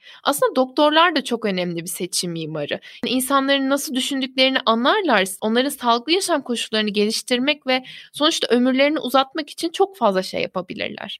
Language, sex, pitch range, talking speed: Turkish, female, 235-310 Hz, 145 wpm